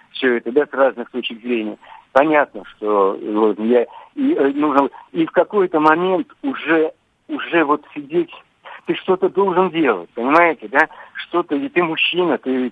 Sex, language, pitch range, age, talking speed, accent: male, Russian, 125-185 Hz, 60-79, 155 wpm, native